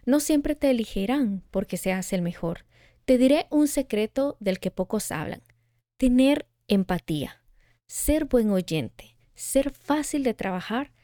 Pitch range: 185-240 Hz